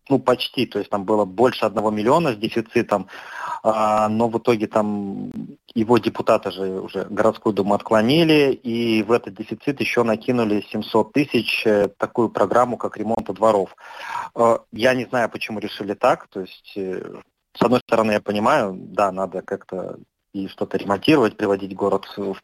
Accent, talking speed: native, 150 wpm